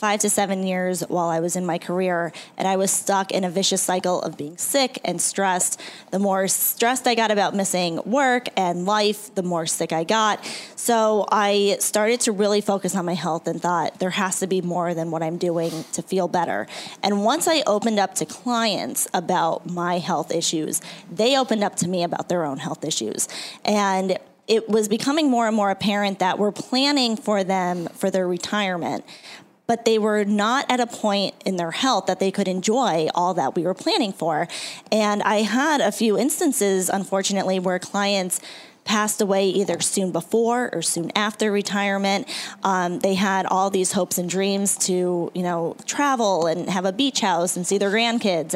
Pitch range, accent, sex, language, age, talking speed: 180-215 Hz, American, female, English, 20-39, 195 wpm